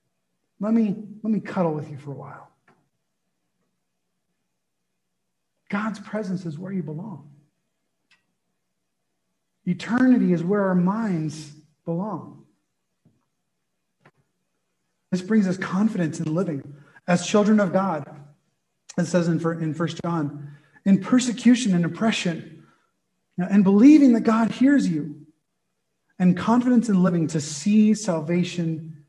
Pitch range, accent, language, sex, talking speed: 155-210 Hz, American, English, male, 110 wpm